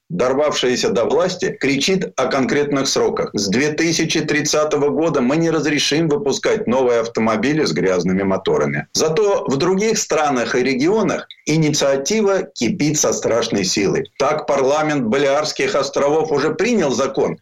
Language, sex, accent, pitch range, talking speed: Russian, male, native, 150-185 Hz, 130 wpm